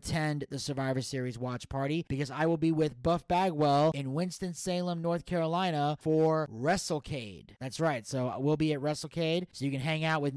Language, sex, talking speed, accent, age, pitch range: English, male, 185 wpm, American, 30-49, 135-165 Hz